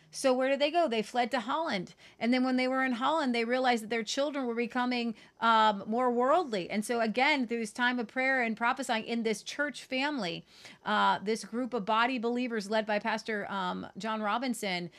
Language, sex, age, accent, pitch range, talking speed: English, female, 40-59, American, 200-265 Hz, 210 wpm